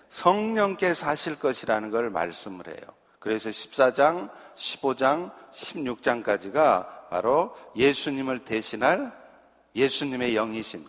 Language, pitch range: Korean, 140-205 Hz